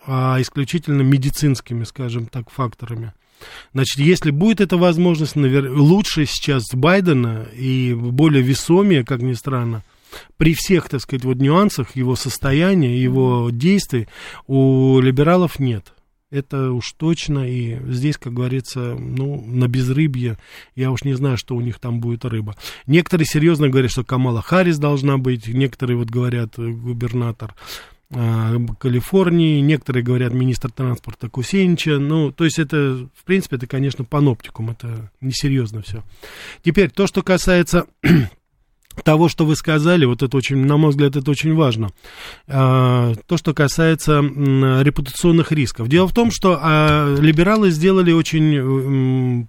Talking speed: 135 wpm